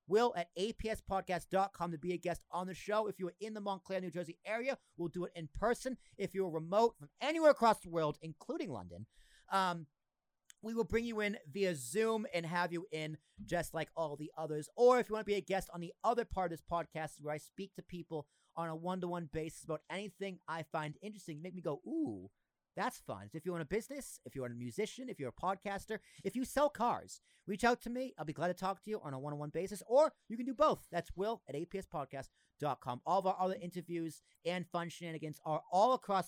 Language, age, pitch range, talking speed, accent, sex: English, 40-59, 155-205 Hz, 230 wpm, American, male